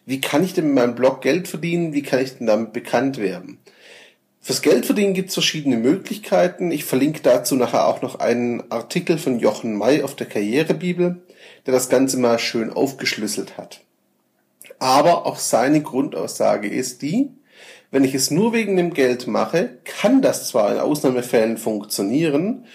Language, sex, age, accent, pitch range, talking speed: German, male, 40-59, German, 125-175 Hz, 165 wpm